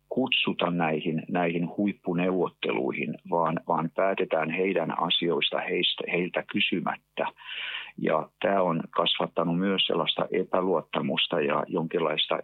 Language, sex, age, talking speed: Finnish, male, 50-69, 90 wpm